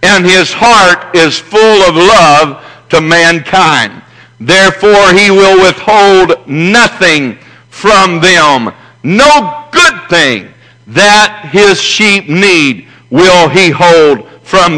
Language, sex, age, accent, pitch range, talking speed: English, male, 60-79, American, 170-205 Hz, 110 wpm